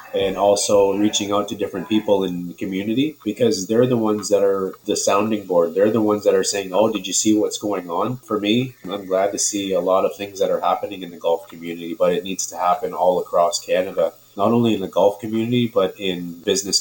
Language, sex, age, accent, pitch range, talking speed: English, male, 30-49, American, 95-115 Hz, 235 wpm